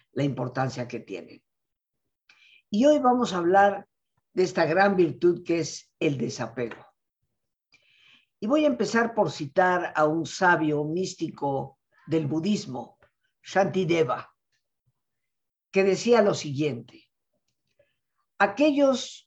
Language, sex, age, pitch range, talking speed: Spanish, female, 50-69, 140-195 Hz, 110 wpm